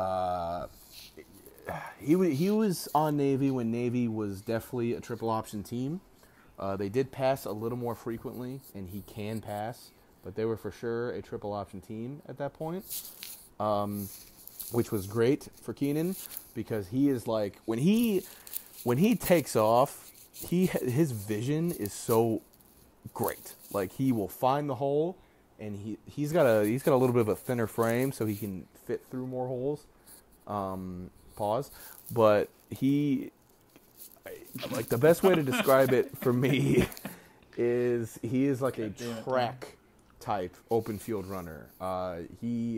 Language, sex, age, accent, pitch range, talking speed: English, male, 30-49, American, 100-130 Hz, 155 wpm